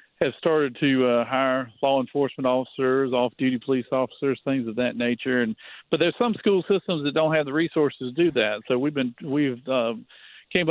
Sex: male